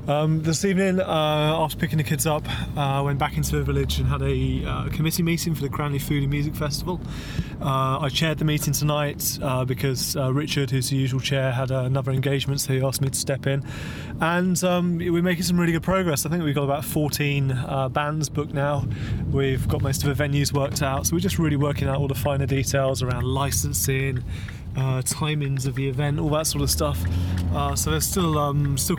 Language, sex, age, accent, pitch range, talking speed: English, male, 30-49, British, 130-150 Hz, 220 wpm